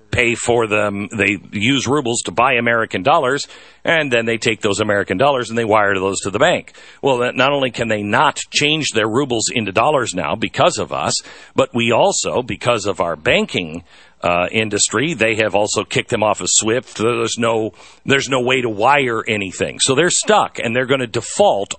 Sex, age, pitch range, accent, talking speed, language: male, 50-69, 100-145 Hz, American, 195 wpm, English